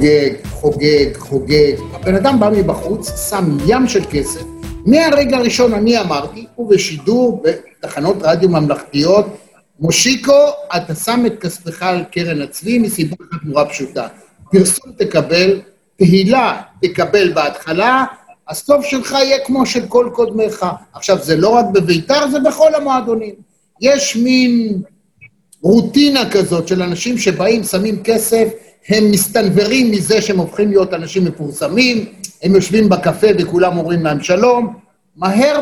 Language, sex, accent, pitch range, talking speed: Hebrew, male, native, 175-240 Hz, 125 wpm